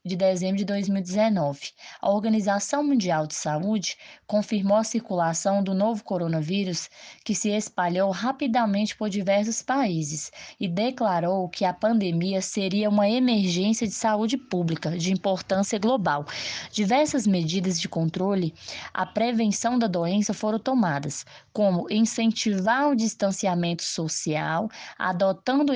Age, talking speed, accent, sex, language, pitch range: 20-39, 120 wpm, Brazilian, female, Portuguese, 185-225 Hz